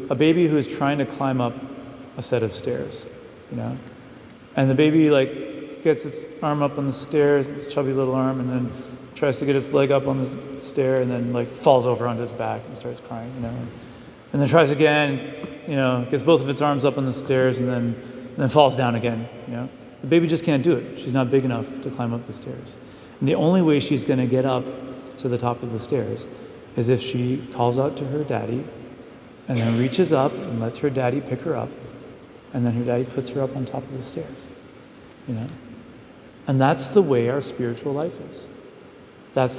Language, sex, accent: English, male, American